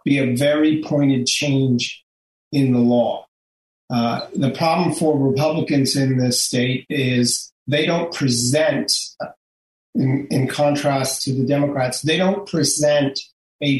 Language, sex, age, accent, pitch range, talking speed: English, male, 40-59, American, 135-180 Hz, 130 wpm